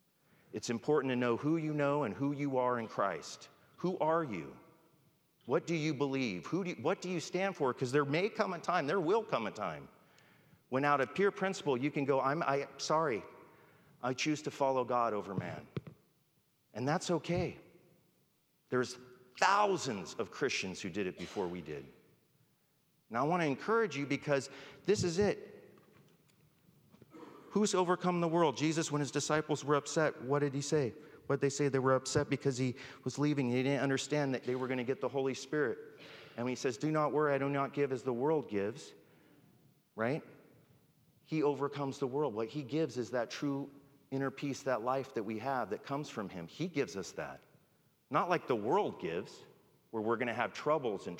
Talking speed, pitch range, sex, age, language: 200 wpm, 130-160 Hz, male, 40-59, English